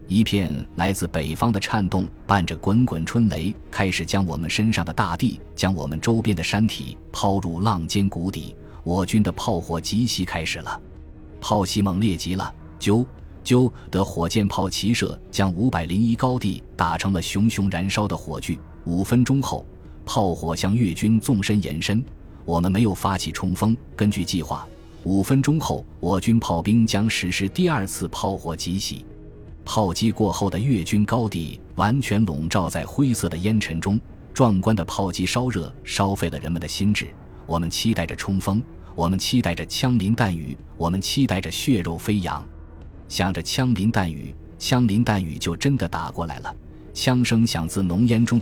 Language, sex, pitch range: Chinese, male, 85-110 Hz